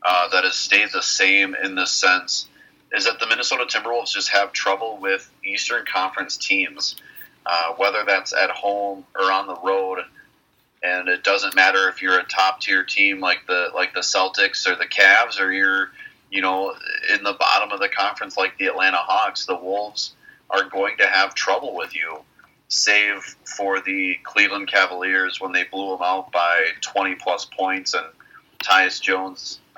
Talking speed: 175 wpm